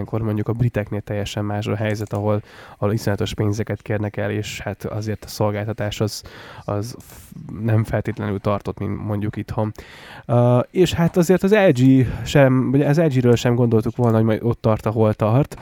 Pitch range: 110-120 Hz